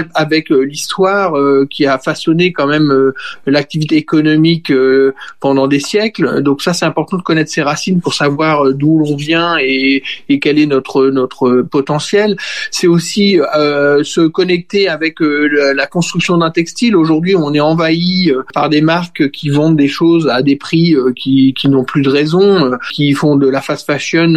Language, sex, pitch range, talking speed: French, male, 140-170 Hz, 190 wpm